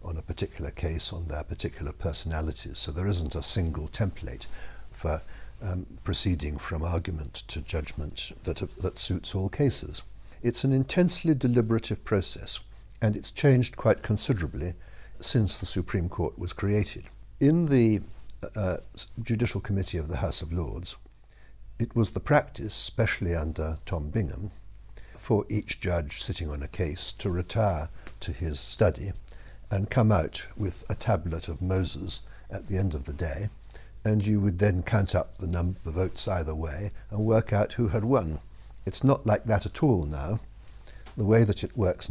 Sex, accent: male, British